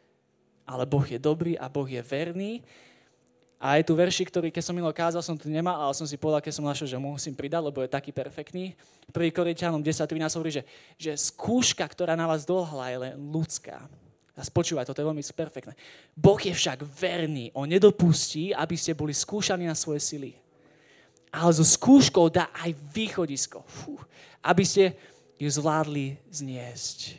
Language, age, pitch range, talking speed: Slovak, 20-39, 145-180 Hz, 175 wpm